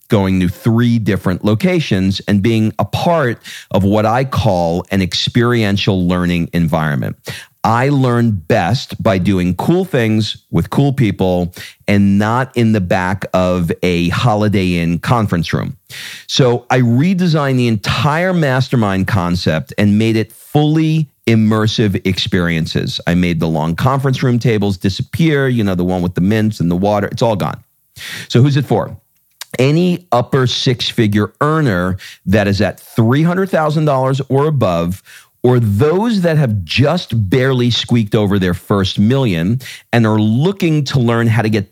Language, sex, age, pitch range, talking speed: English, male, 40-59, 95-130 Hz, 150 wpm